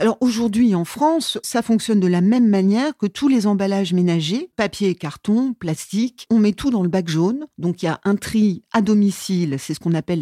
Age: 40-59